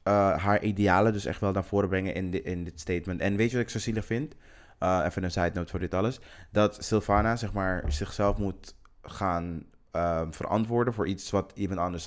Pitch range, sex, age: 85-105 Hz, male, 20-39